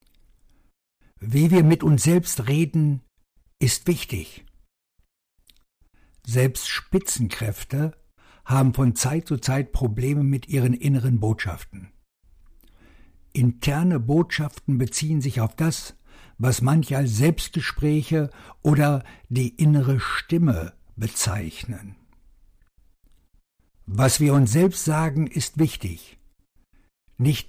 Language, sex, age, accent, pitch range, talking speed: German, male, 60-79, German, 100-145 Hz, 95 wpm